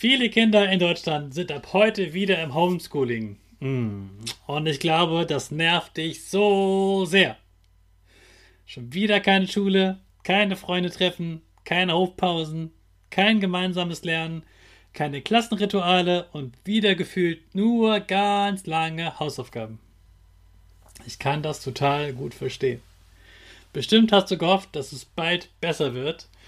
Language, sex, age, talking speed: German, male, 30-49, 120 wpm